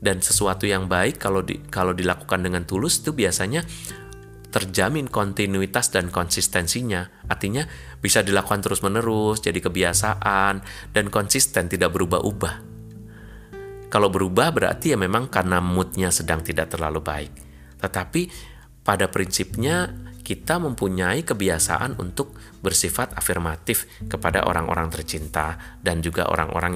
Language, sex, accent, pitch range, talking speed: Indonesian, male, native, 85-105 Hz, 115 wpm